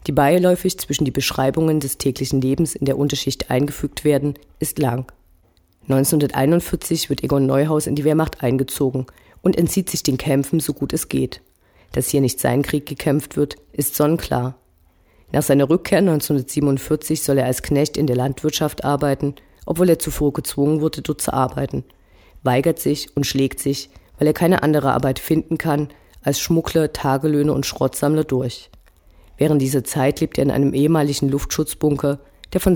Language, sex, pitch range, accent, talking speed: German, female, 135-155 Hz, German, 165 wpm